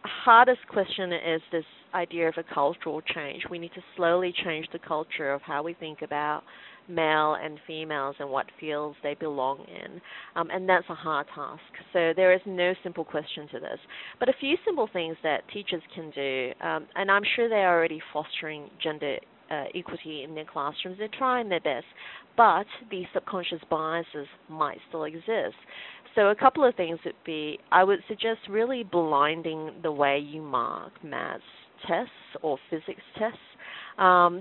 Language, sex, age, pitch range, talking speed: English, female, 40-59, 155-195 Hz, 175 wpm